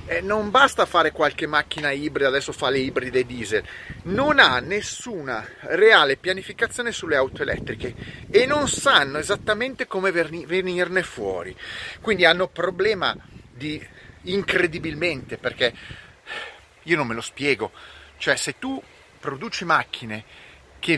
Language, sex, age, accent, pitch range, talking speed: Italian, male, 30-49, native, 130-205 Hz, 125 wpm